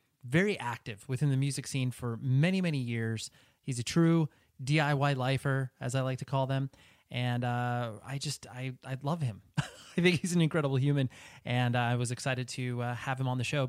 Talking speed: 205 wpm